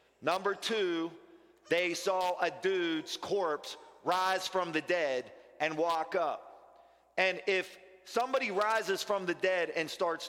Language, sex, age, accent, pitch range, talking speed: English, male, 40-59, American, 185-220 Hz, 135 wpm